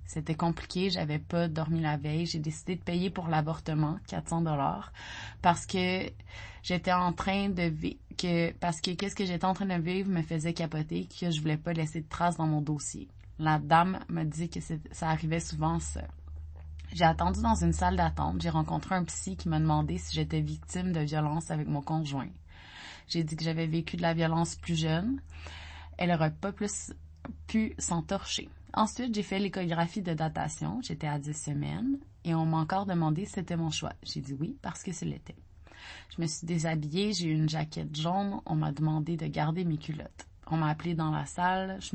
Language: French